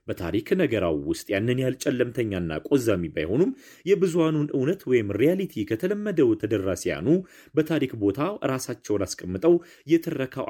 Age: 30-49